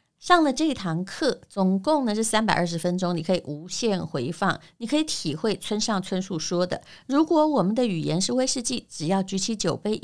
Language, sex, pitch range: Chinese, female, 165-220 Hz